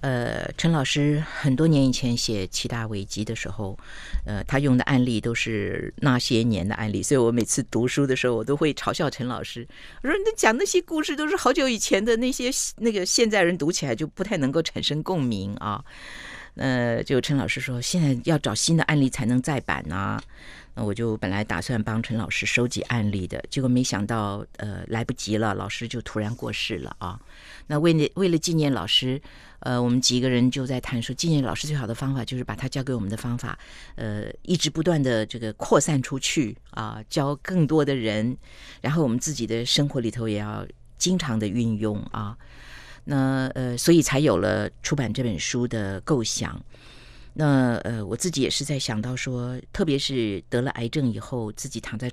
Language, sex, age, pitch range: Chinese, female, 50-69, 110-145 Hz